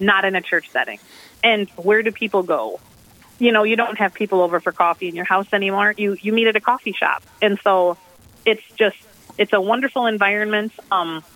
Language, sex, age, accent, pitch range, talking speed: English, female, 30-49, American, 180-220 Hz, 205 wpm